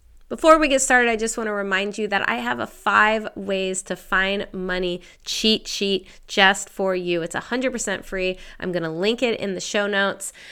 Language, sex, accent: English, female, American